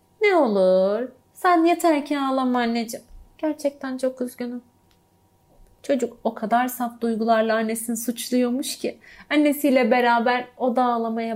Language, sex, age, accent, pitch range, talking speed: Turkish, female, 40-59, native, 190-260 Hz, 120 wpm